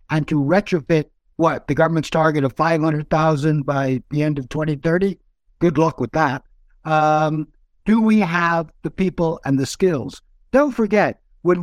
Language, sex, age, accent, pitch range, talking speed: English, male, 60-79, American, 150-205 Hz, 155 wpm